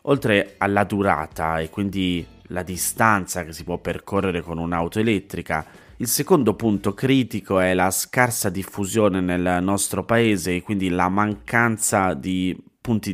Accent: native